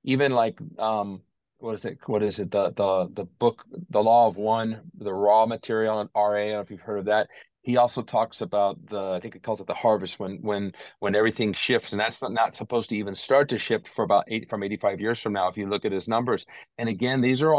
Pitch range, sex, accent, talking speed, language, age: 105-120 Hz, male, American, 255 wpm, English, 40-59